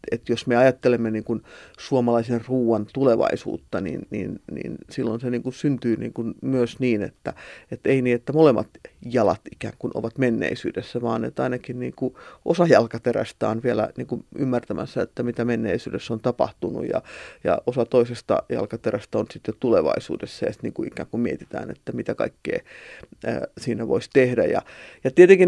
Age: 30-49